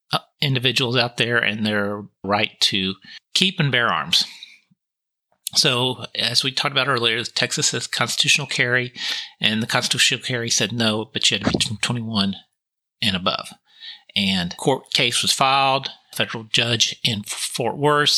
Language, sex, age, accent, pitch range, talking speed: English, male, 40-59, American, 115-165 Hz, 155 wpm